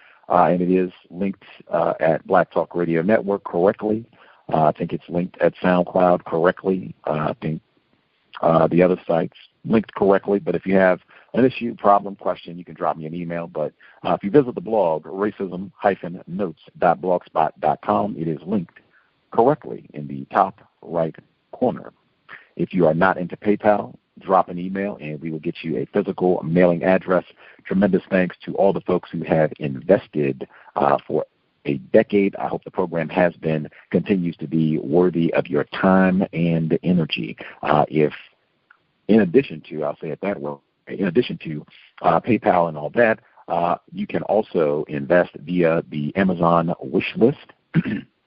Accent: American